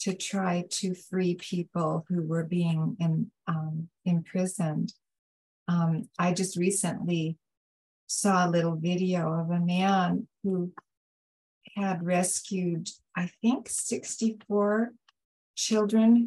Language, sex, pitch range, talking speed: English, female, 175-210 Hz, 105 wpm